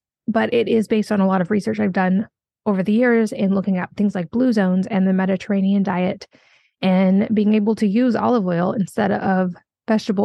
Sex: female